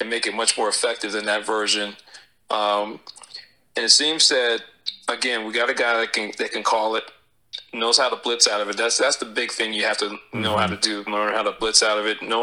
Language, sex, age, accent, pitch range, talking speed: English, male, 30-49, American, 105-115 Hz, 250 wpm